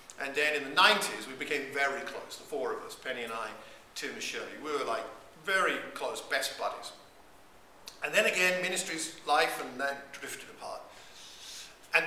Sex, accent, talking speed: male, British, 180 wpm